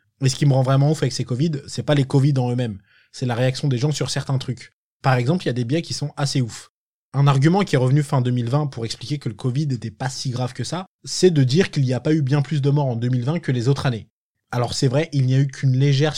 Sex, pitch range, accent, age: male, 120-145 Hz, French, 20-39